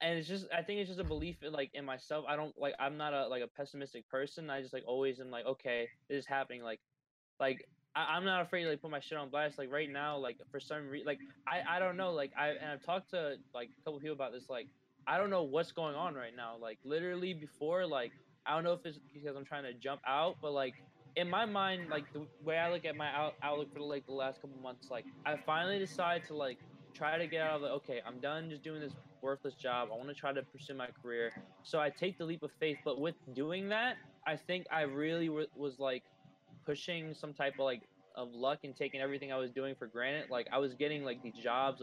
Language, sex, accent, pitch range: English, male, American, 130-155 Hz